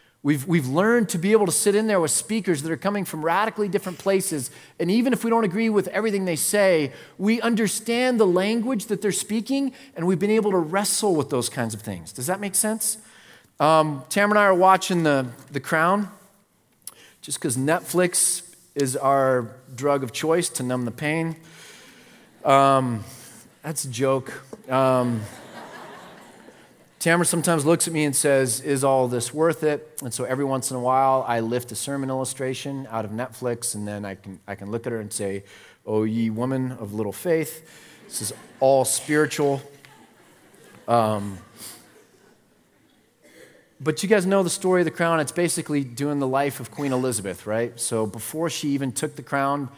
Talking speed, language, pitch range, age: 180 wpm, English, 125-180 Hz, 30-49